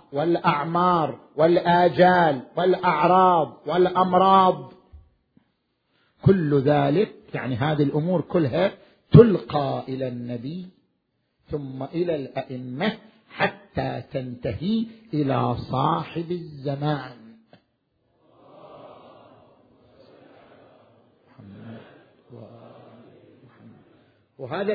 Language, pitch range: Arabic, 135-185 Hz